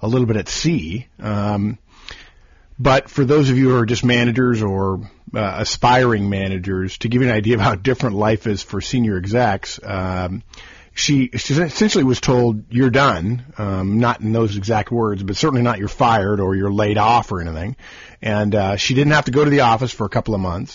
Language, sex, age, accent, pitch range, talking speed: English, male, 50-69, American, 100-130 Hz, 210 wpm